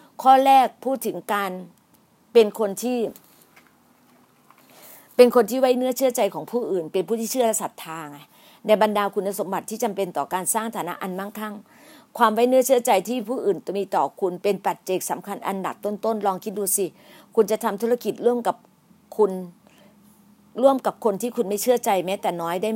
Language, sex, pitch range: Thai, female, 195-235 Hz